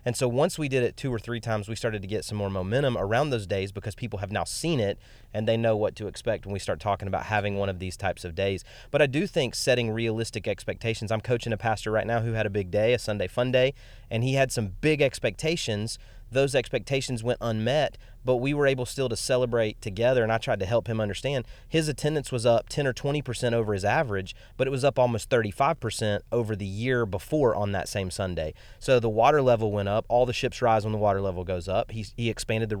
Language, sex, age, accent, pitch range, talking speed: English, male, 30-49, American, 105-130 Hz, 245 wpm